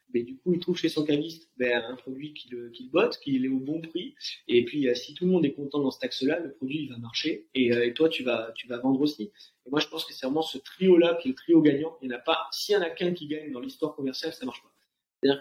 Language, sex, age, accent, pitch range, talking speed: French, male, 30-49, French, 130-170 Hz, 320 wpm